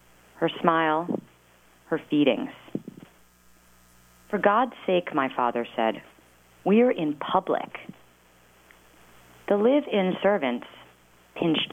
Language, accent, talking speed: English, American, 85 wpm